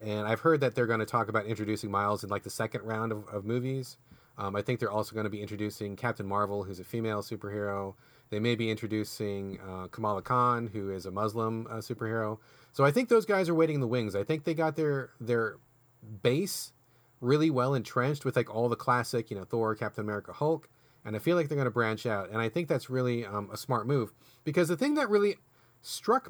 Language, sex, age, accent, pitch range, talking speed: English, male, 30-49, American, 110-150 Hz, 235 wpm